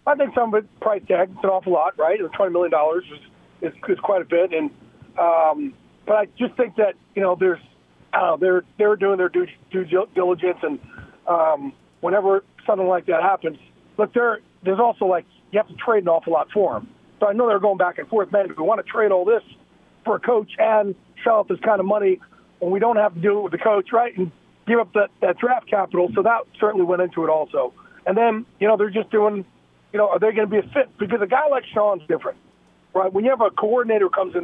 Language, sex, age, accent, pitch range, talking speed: English, male, 40-59, American, 180-230 Hz, 245 wpm